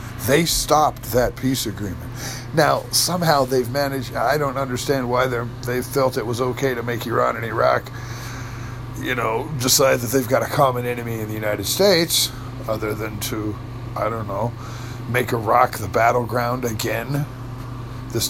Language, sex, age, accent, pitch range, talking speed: English, male, 50-69, American, 120-135 Hz, 155 wpm